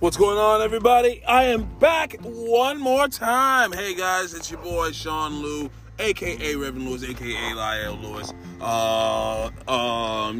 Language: English